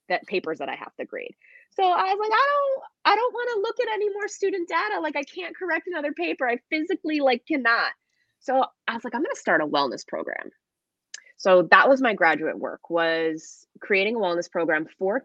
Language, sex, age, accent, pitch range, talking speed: English, female, 20-39, American, 180-275 Hz, 220 wpm